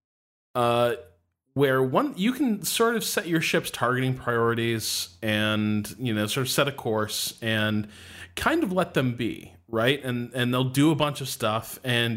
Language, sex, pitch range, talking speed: English, male, 110-135 Hz, 180 wpm